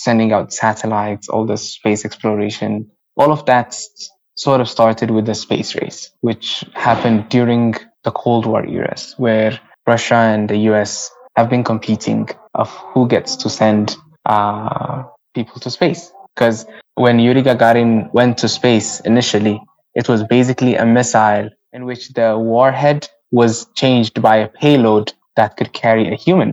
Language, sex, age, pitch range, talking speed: English, male, 20-39, 110-125 Hz, 155 wpm